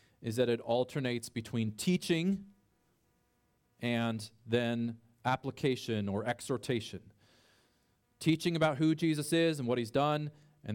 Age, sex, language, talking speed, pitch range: 30-49, male, English, 115 wpm, 110-140 Hz